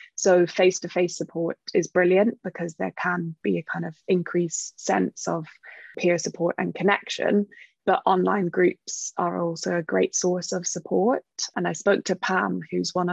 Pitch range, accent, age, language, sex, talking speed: 175-190 Hz, British, 20-39, English, female, 165 wpm